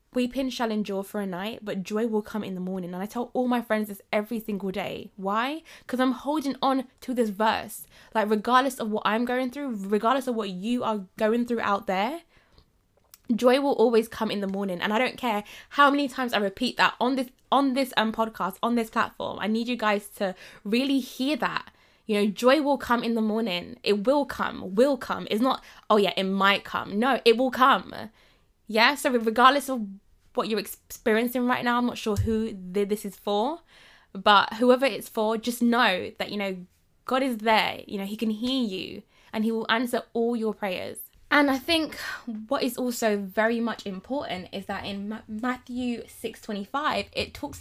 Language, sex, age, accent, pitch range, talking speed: English, female, 10-29, British, 210-255 Hz, 205 wpm